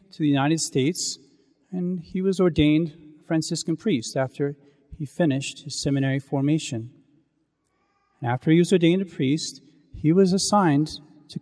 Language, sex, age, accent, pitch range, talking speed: English, male, 40-59, American, 135-170 Hz, 140 wpm